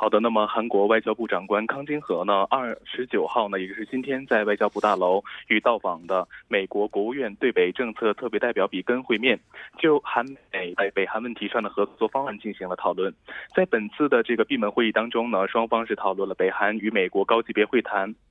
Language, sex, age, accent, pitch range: Korean, male, 20-39, Chinese, 105-135 Hz